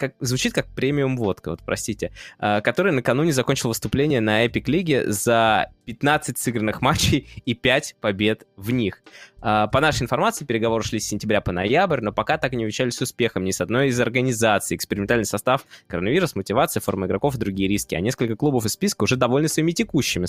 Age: 20-39